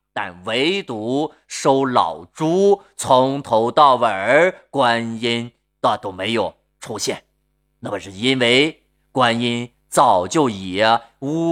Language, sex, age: Chinese, male, 30-49